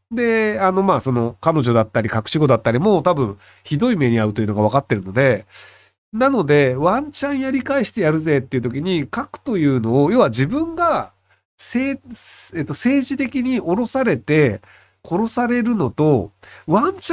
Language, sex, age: Japanese, male, 40-59